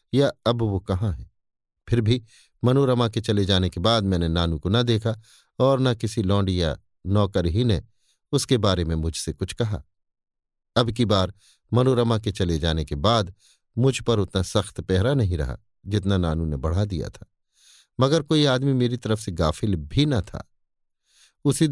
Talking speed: 180 wpm